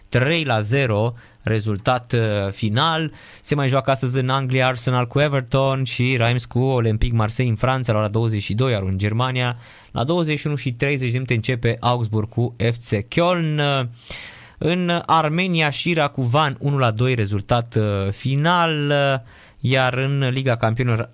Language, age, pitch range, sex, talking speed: Romanian, 20-39, 110-140 Hz, male, 140 wpm